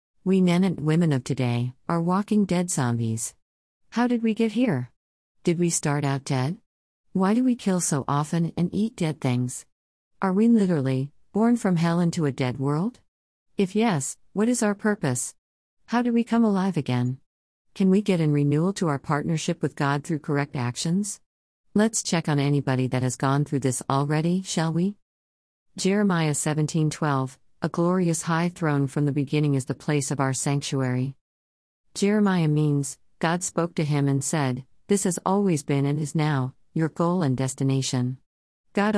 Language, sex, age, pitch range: English, female, 50-69, 130-175 Hz